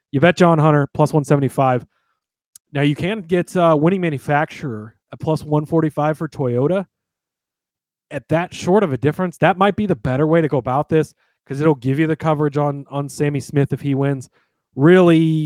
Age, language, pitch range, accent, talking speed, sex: 30-49, English, 135-180 Hz, American, 185 wpm, male